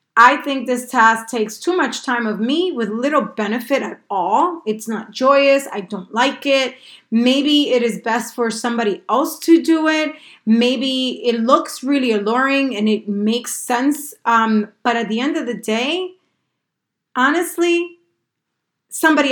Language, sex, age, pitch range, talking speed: English, female, 30-49, 220-275 Hz, 160 wpm